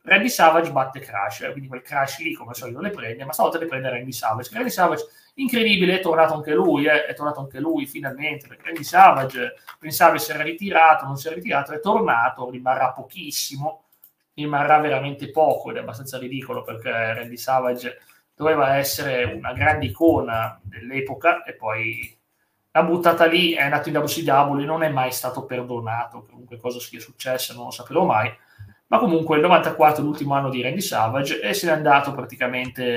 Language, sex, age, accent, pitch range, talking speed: Italian, male, 30-49, native, 125-160 Hz, 180 wpm